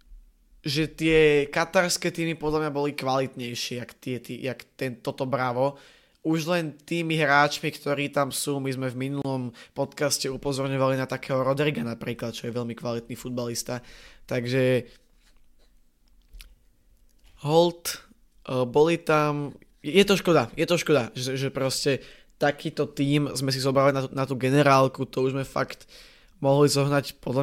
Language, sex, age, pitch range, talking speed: Slovak, male, 20-39, 125-145 Hz, 145 wpm